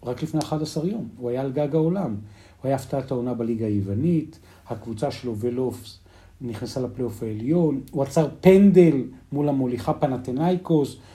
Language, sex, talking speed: Hebrew, male, 145 wpm